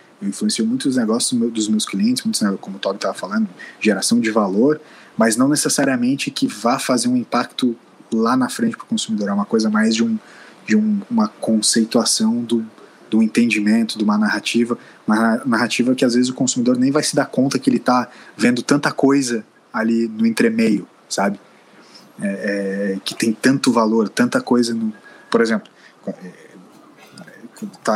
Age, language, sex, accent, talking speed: 20-39, Portuguese, male, Brazilian, 170 wpm